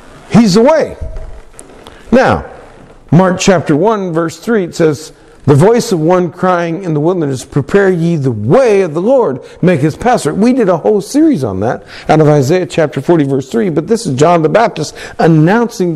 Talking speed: 190 wpm